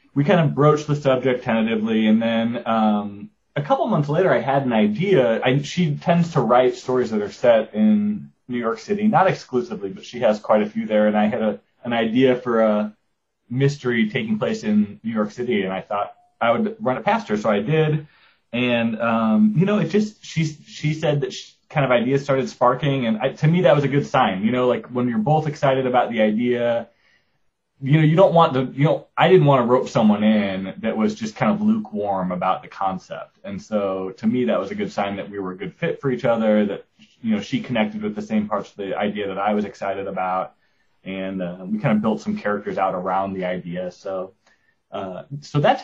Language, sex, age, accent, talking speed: English, male, 30-49, American, 230 wpm